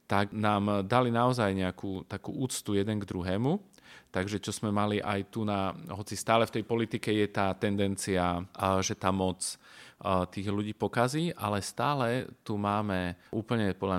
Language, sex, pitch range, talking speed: Slovak, male, 95-115 Hz, 160 wpm